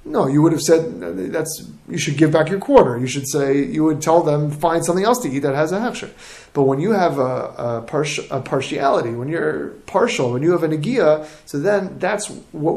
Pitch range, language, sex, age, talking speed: 135-175 Hz, English, male, 30-49, 230 wpm